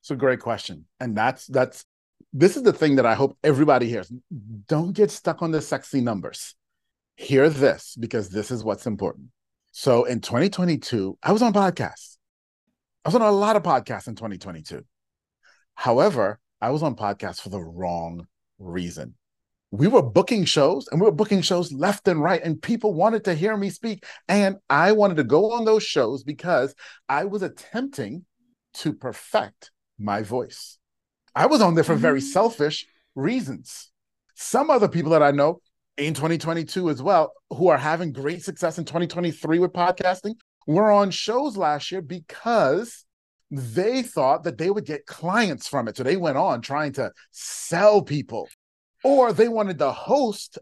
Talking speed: 170 wpm